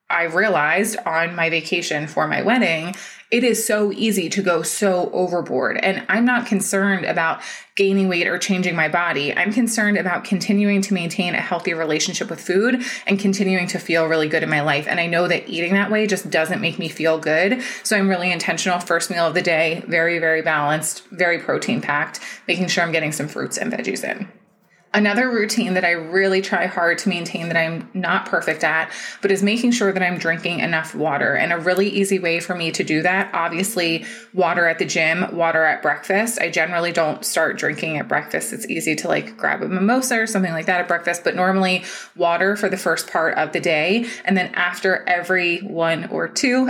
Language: English